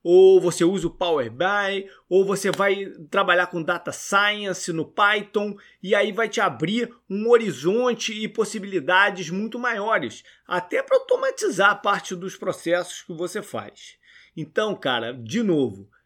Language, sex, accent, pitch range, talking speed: Portuguese, male, Brazilian, 180-245 Hz, 150 wpm